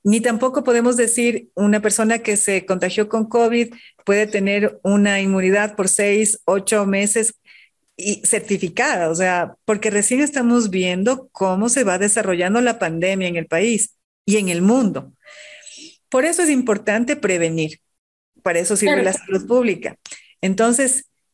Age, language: 40-59, Spanish